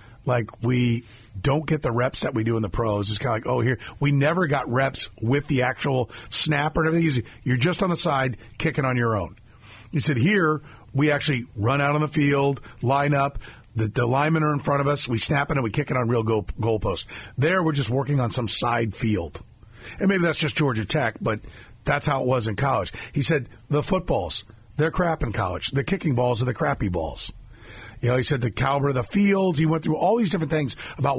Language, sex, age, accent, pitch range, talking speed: English, male, 40-59, American, 115-150 Hz, 235 wpm